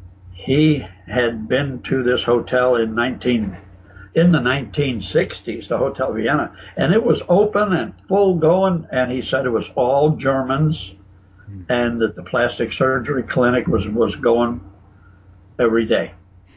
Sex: male